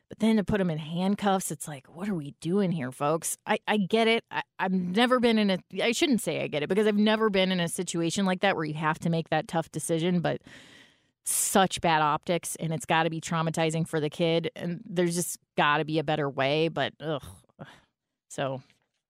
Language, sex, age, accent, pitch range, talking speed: English, female, 30-49, American, 165-220 Hz, 225 wpm